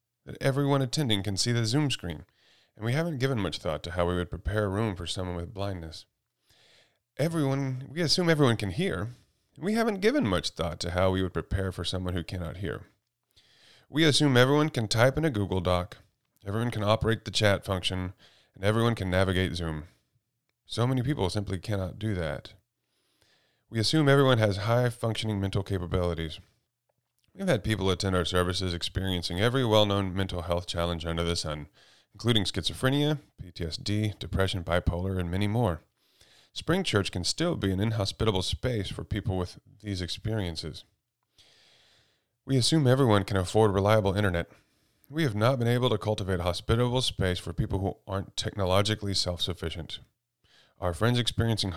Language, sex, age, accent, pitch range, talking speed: English, male, 30-49, American, 90-120 Hz, 165 wpm